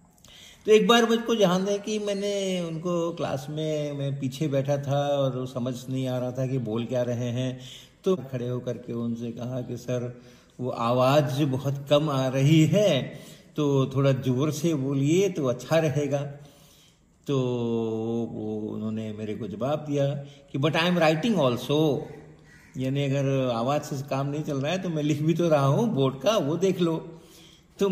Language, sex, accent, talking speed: Hindi, male, native, 185 wpm